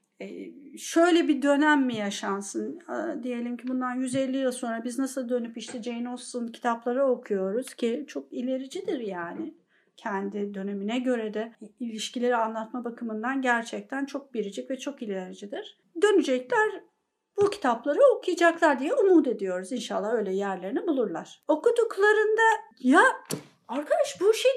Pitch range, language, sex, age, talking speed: 245-360 Hz, Turkish, female, 50-69, 125 wpm